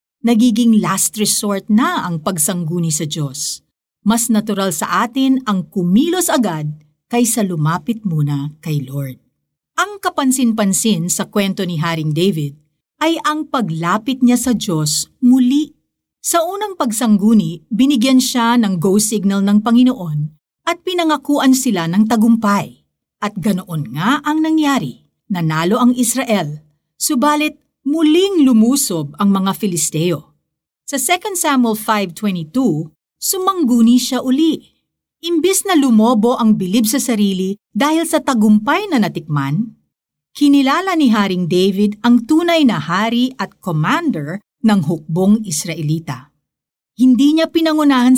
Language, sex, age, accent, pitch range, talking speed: Filipino, female, 50-69, native, 175-270 Hz, 120 wpm